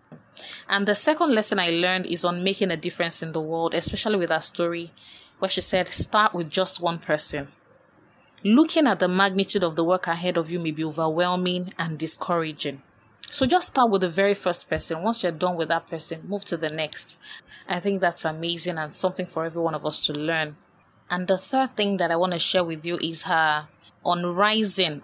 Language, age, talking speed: English, 20-39, 210 wpm